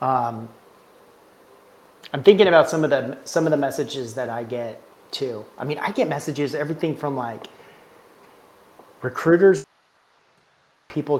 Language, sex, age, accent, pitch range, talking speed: English, male, 30-49, American, 130-160 Hz, 135 wpm